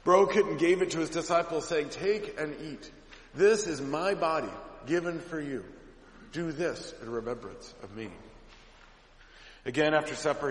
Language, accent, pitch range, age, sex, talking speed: English, American, 140-190 Hz, 40-59, male, 160 wpm